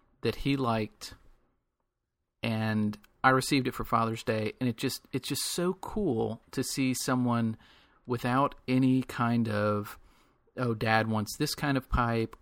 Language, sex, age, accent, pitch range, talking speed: English, male, 40-59, American, 110-130 Hz, 150 wpm